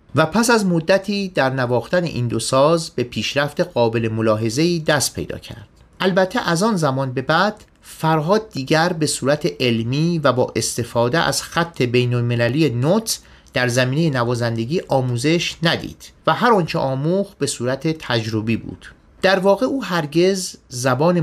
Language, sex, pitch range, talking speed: Persian, male, 125-175 Hz, 145 wpm